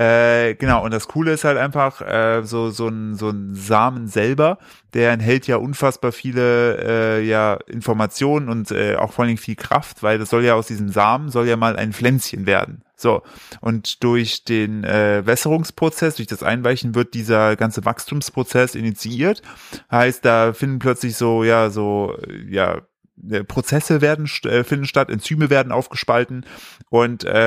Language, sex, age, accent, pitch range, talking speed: German, male, 30-49, German, 110-130 Hz, 160 wpm